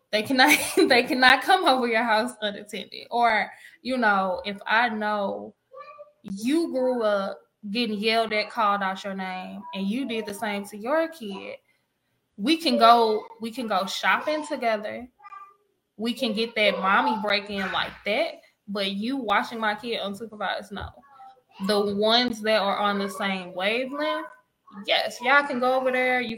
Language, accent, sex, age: English, American, female, 10-29